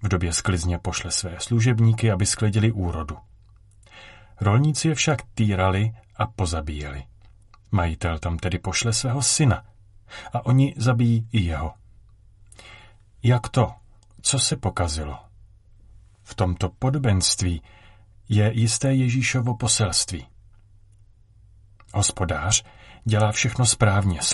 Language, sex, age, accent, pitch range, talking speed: Czech, male, 40-59, native, 95-120 Hz, 105 wpm